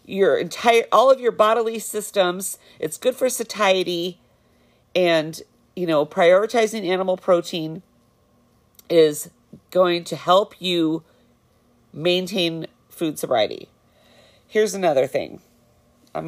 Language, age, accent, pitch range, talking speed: English, 40-59, American, 160-215 Hz, 105 wpm